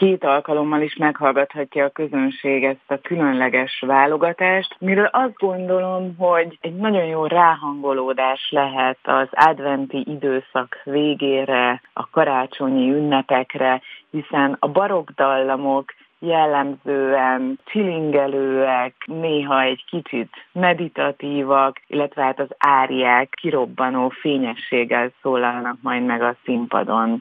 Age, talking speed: 30-49, 100 wpm